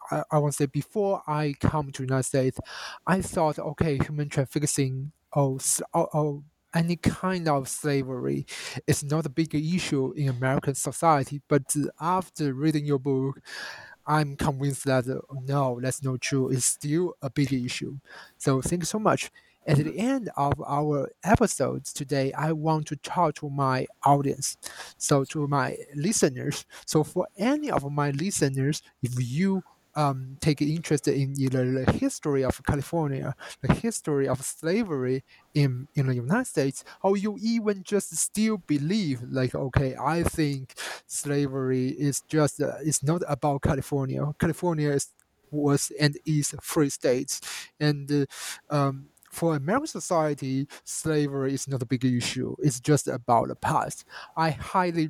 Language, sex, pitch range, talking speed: English, male, 135-160 Hz, 155 wpm